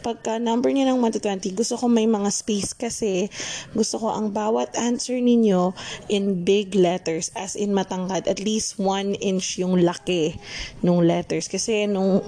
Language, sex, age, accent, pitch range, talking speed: Filipino, female, 20-39, native, 175-210 Hz, 165 wpm